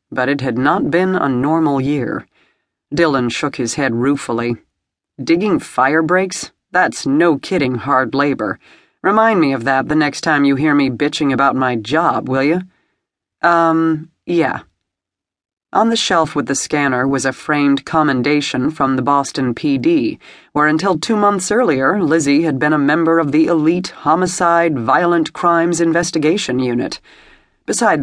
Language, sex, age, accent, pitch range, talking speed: English, female, 40-59, American, 130-165 Hz, 155 wpm